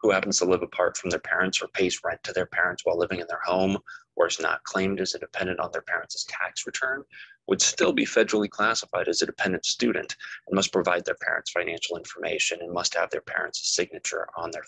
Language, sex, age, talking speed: English, male, 20-39, 225 wpm